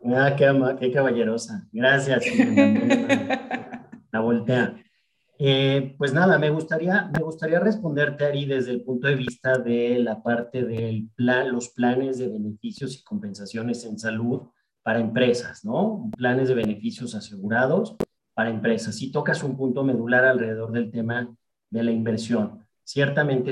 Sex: male